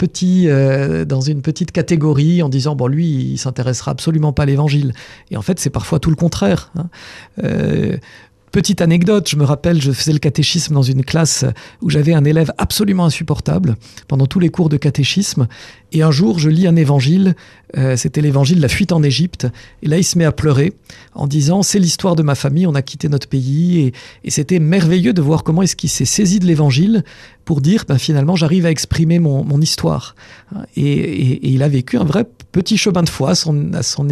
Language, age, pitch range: French, 50-69, 140-170 Hz